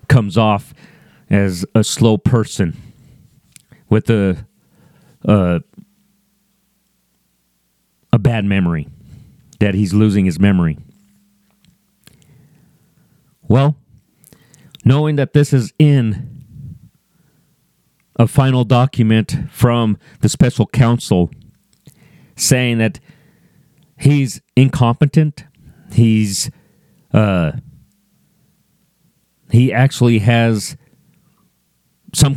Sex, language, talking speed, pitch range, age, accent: male, English, 75 wpm, 110-145 Hz, 40-59, American